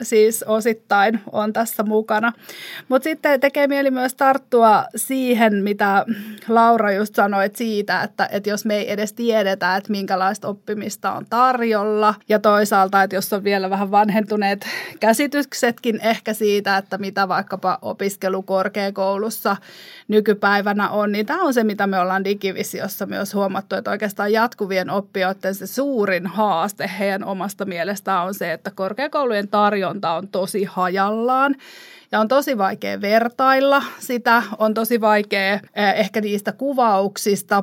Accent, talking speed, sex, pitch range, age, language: native, 135 wpm, female, 195-220 Hz, 30-49, Finnish